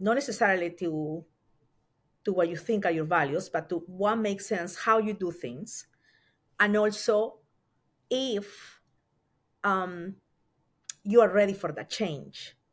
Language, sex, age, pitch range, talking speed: English, female, 40-59, 170-225 Hz, 135 wpm